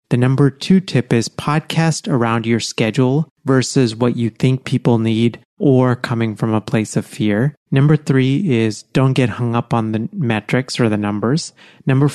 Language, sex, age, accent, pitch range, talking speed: English, male, 30-49, American, 115-145 Hz, 180 wpm